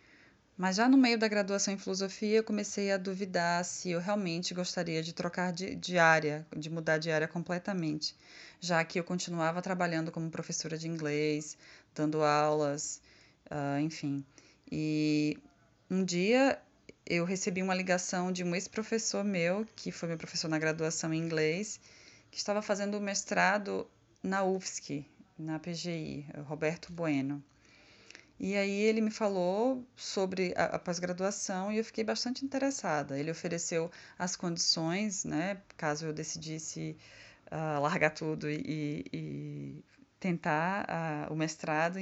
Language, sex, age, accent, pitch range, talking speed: Portuguese, female, 20-39, Brazilian, 155-195 Hz, 140 wpm